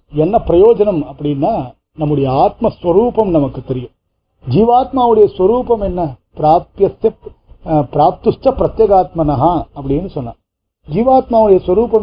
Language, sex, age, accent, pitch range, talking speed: Tamil, male, 50-69, native, 145-205 Hz, 80 wpm